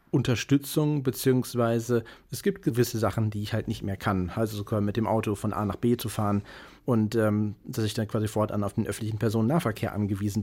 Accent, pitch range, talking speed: German, 110-120 Hz, 200 wpm